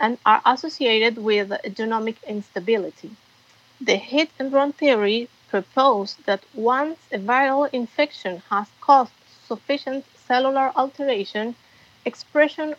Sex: female